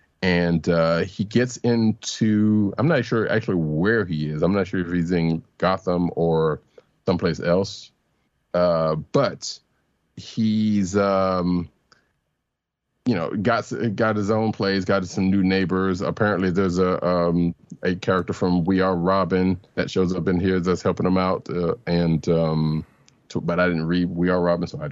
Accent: American